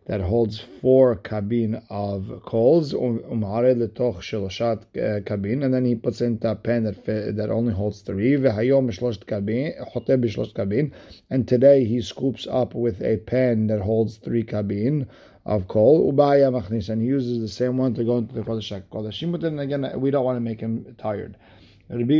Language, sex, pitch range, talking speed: English, male, 110-130 Hz, 150 wpm